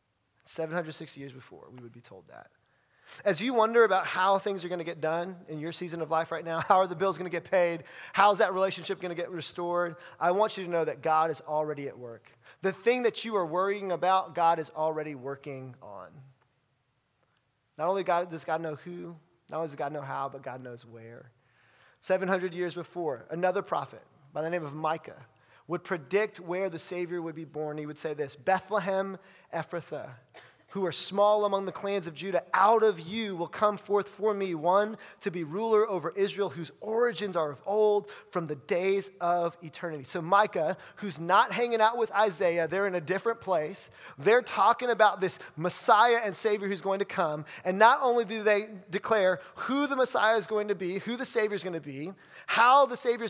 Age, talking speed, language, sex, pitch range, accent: 20-39, 205 wpm, English, male, 160-205 Hz, American